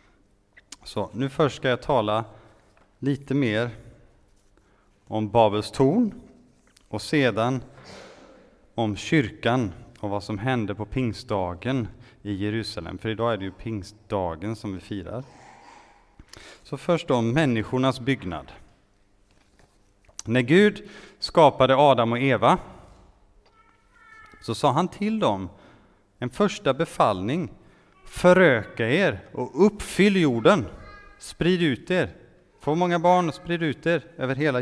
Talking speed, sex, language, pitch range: 120 wpm, male, Swedish, 105-140 Hz